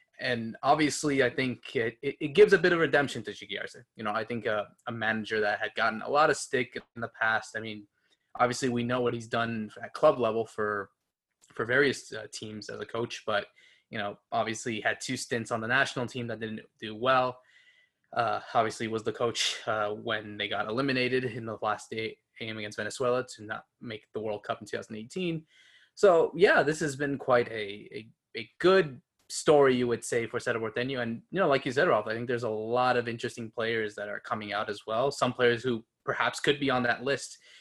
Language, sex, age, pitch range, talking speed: English, male, 20-39, 110-130 Hz, 220 wpm